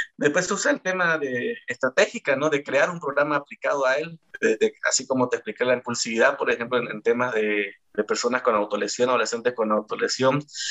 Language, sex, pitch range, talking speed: Spanish, male, 115-150 Hz, 200 wpm